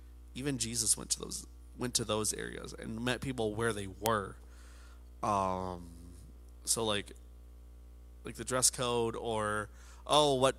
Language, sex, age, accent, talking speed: English, male, 20-39, American, 140 wpm